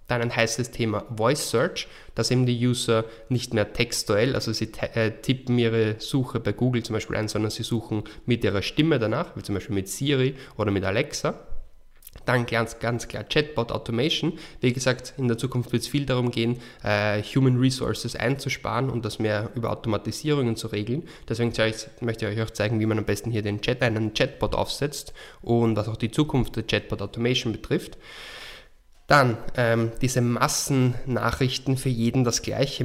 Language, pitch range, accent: German, 110-125 Hz, German